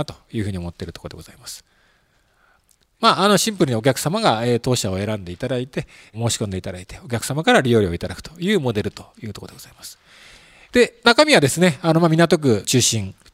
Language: Japanese